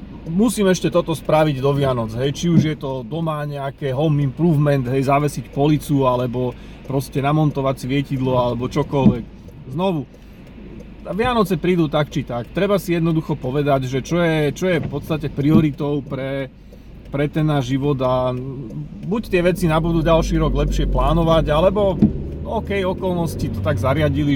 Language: Slovak